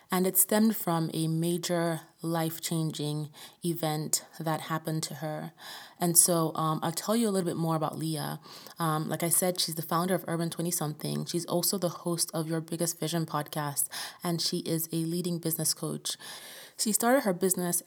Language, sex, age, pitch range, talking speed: English, female, 20-39, 160-180 Hz, 180 wpm